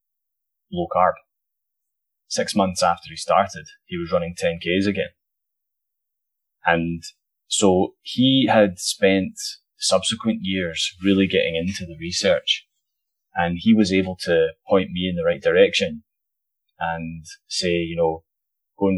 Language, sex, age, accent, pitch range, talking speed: English, male, 30-49, British, 85-110 Hz, 130 wpm